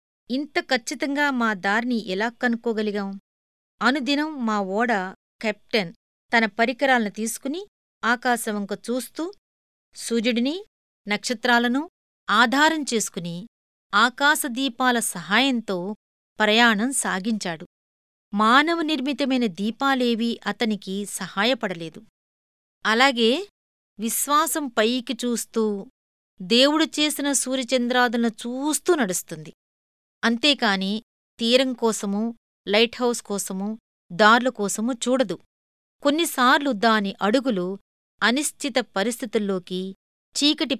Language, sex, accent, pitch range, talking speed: Telugu, female, native, 200-260 Hz, 75 wpm